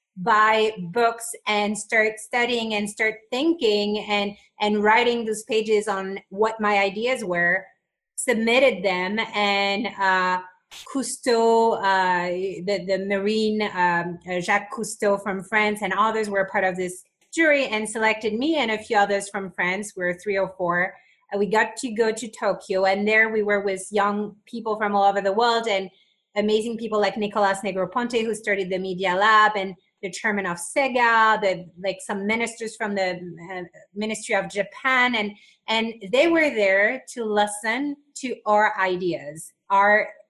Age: 30-49